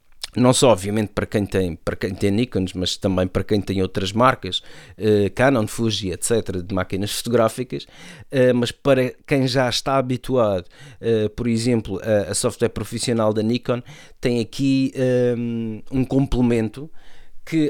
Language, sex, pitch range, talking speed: Portuguese, male, 110-135 Hz, 140 wpm